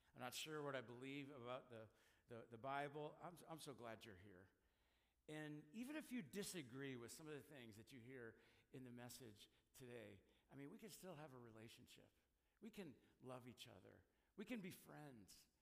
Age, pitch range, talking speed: 60-79, 120-160 Hz, 195 wpm